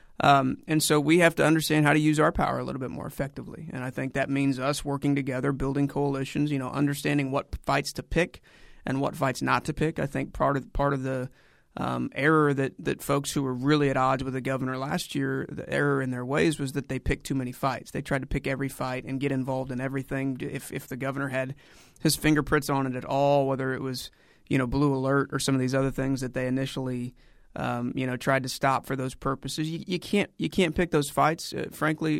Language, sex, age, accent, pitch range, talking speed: English, male, 30-49, American, 130-150 Hz, 245 wpm